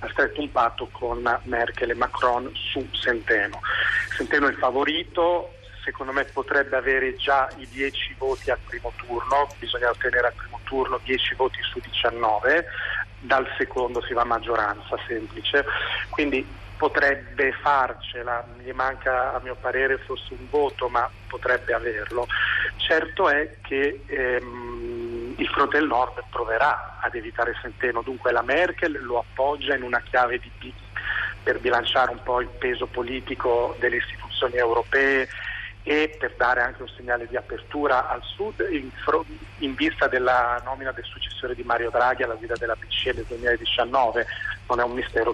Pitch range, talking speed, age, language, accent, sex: 120-130 Hz, 155 wpm, 40-59, Italian, native, male